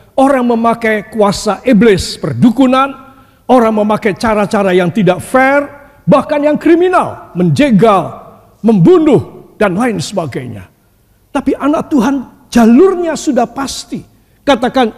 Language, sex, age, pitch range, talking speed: Indonesian, male, 50-69, 190-295 Hz, 105 wpm